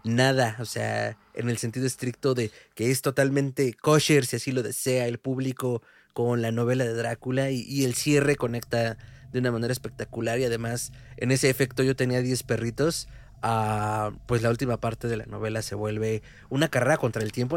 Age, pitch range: 20-39, 115-145 Hz